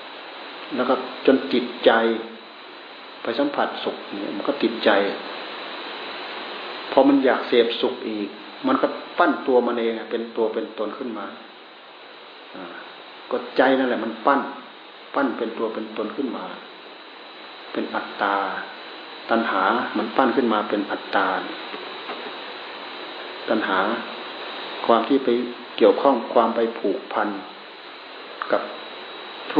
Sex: male